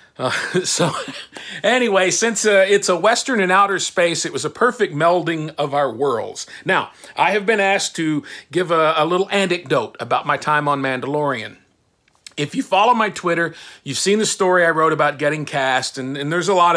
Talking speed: 195 wpm